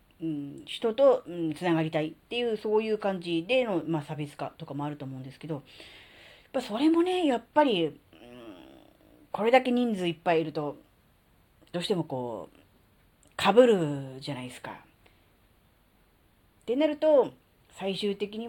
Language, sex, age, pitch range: Japanese, female, 40-59, 150-250 Hz